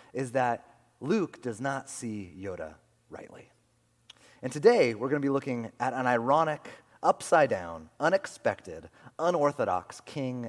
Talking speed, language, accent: 125 wpm, English, American